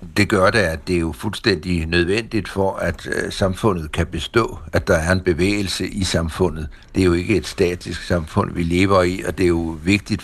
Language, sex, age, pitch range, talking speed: Danish, male, 60-79, 90-115 Hz, 210 wpm